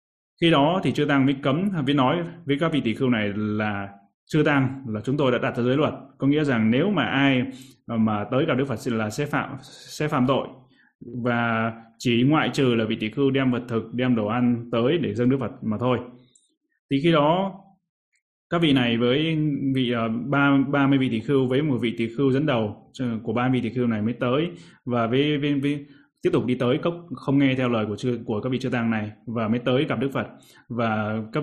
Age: 20-39